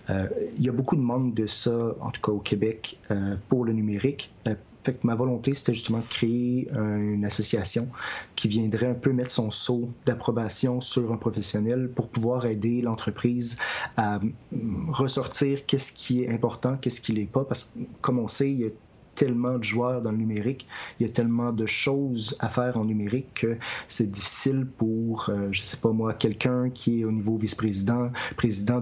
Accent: Canadian